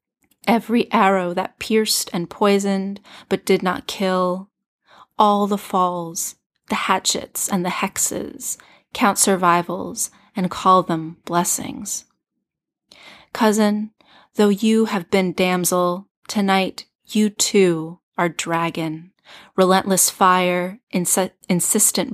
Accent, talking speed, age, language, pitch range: American, 105 wpm, 30-49, English, 175-200 Hz